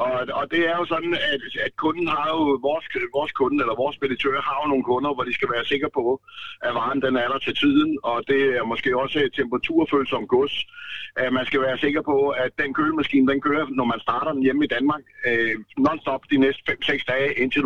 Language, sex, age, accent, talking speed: Danish, male, 60-79, native, 225 wpm